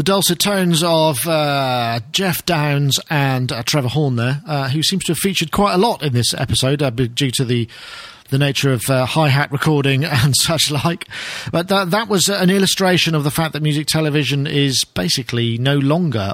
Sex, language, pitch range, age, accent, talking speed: male, English, 130-165 Hz, 40-59, British, 195 wpm